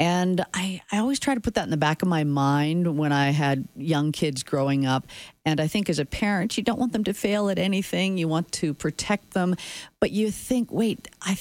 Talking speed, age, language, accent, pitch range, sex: 235 wpm, 40-59, English, American, 150-210 Hz, female